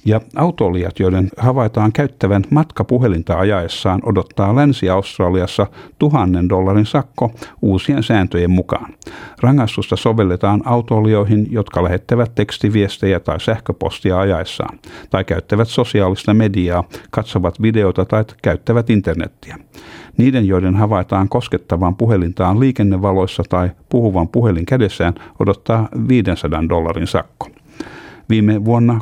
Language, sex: Finnish, male